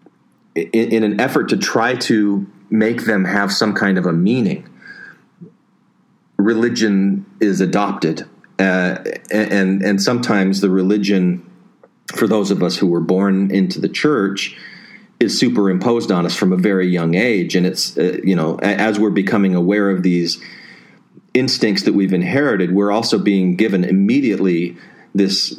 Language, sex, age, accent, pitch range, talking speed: English, male, 40-59, American, 95-110 Hz, 150 wpm